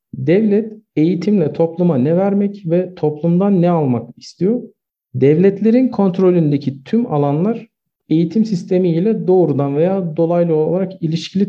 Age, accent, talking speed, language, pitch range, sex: 50-69, native, 110 wpm, Turkish, 150-195 Hz, male